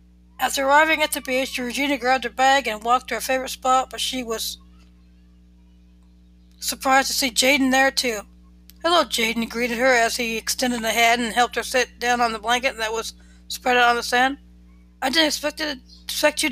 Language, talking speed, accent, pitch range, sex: English, 195 wpm, American, 205-260 Hz, female